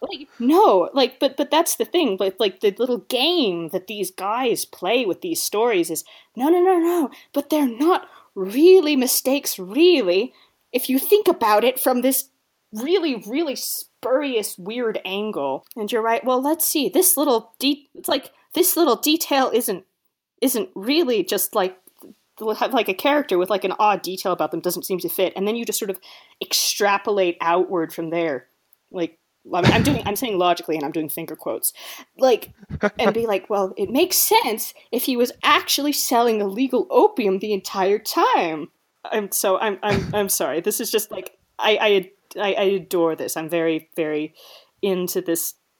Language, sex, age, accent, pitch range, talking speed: English, female, 30-49, American, 180-285 Hz, 180 wpm